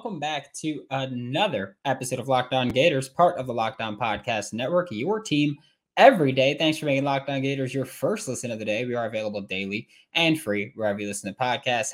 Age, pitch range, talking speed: 20-39, 105-145 Hz, 200 wpm